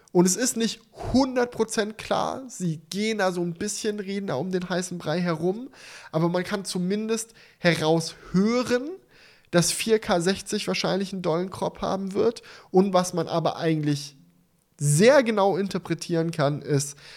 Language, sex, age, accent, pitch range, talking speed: German, male, 10-29, German, 145-190 Hz, 145 wpm